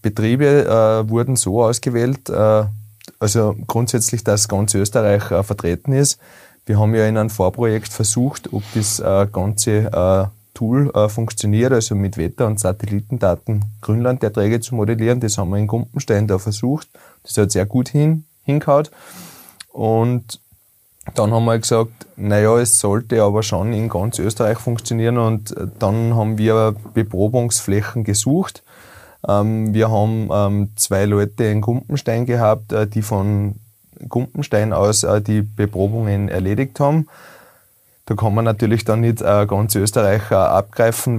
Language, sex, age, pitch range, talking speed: German, male, 20-39, 100-115 Hz, 140 wpm